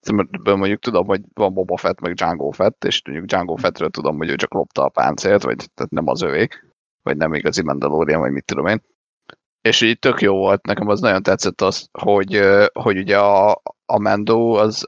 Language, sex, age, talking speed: Hungarian, male, 30-49, 200 wpm